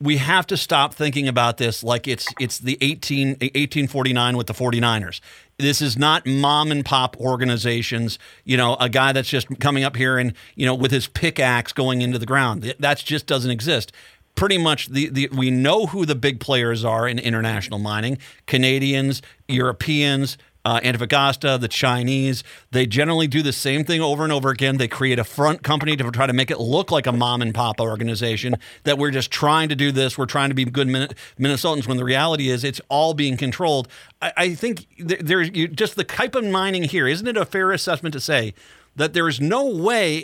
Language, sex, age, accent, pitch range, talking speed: English, male, 40-59, American, 125-155 Hz, 200 wpm